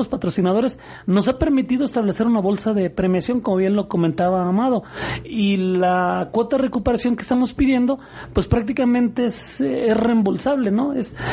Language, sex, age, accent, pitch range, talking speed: Spanish, male, 40-59, Mexican, 185-240 Hz, 165 wpm